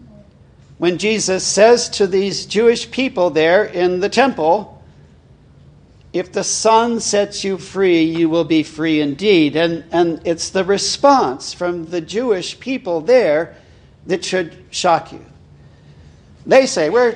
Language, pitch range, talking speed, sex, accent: English, 165-230 Hz, 135 wpm, male, American